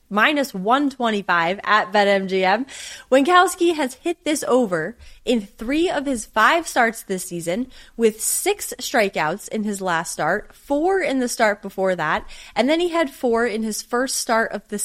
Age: 20-39